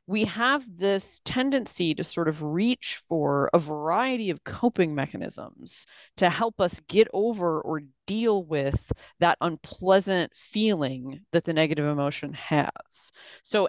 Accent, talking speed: American, 135 wpm